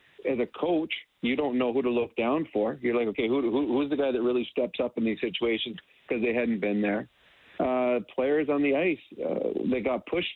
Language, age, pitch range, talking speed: English, 40-59, 120-135 Hz, 220 wpm